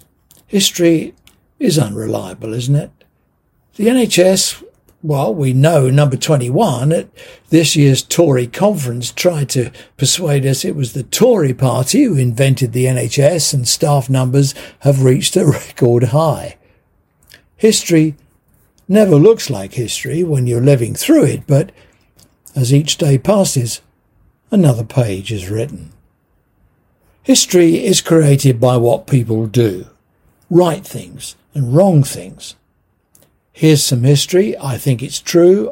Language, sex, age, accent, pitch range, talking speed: English, male, 60-79, British, 125-165 Hz, 130 wpm